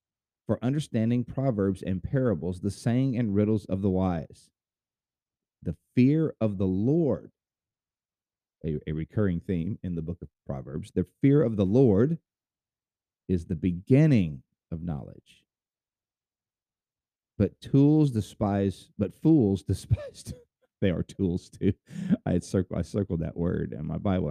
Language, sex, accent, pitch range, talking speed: English, male, American, 90-115 Hz, 140 wpm